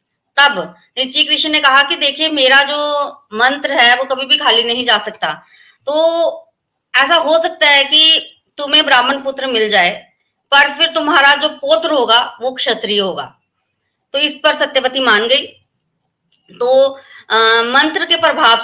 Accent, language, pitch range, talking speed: native, Hindi, 240-290 Hz, 160 wpm